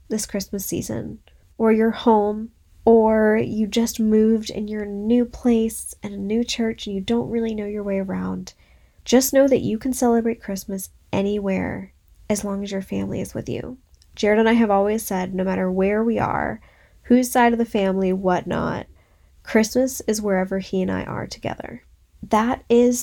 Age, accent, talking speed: 10-29, American, 180 wpm